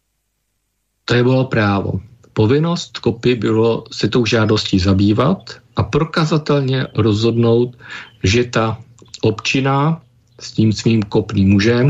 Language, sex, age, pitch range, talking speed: Slovak, male, 50-69, 105-125 Hz, 110 wpm